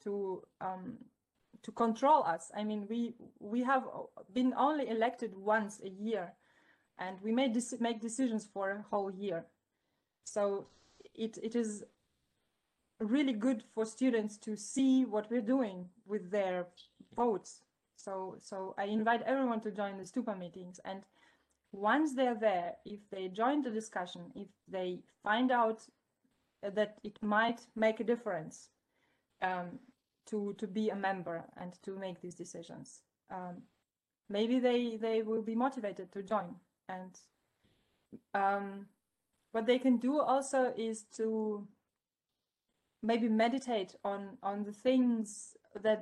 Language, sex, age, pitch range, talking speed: English, female, 20-39, 195-235 Hz, 140 wpm